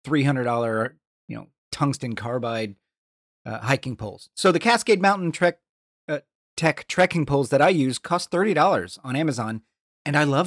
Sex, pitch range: male, 140-170 Hz